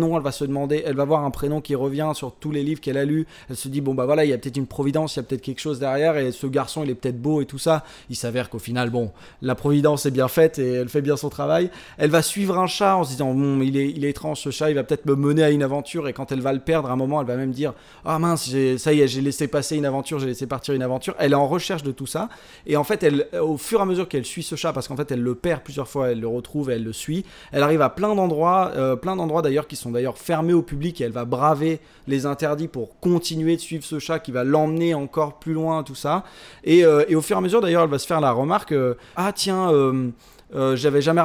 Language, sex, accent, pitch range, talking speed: French, male, French, 135-160 Hz, 295 wpm